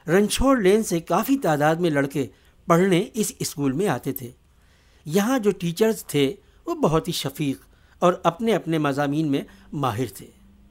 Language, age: Urdu, 60-79